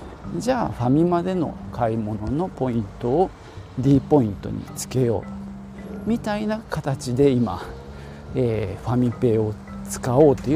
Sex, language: male, Japanese